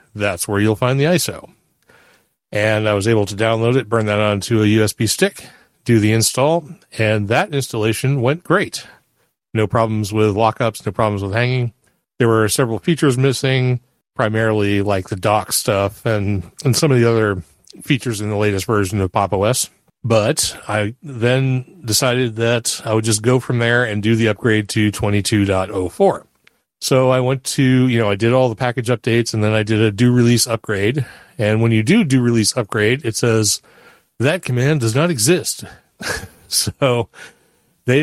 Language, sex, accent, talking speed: English, male, American, 175 wpm